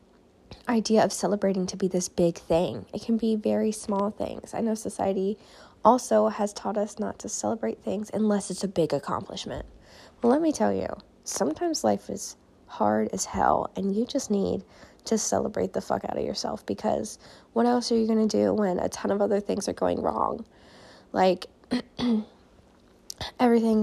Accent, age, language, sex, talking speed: American, 10-29, English, female, 180 wpm